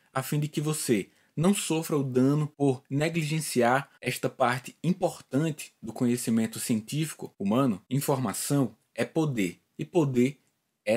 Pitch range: 130-160 Hz